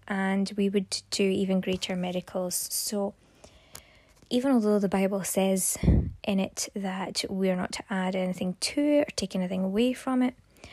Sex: female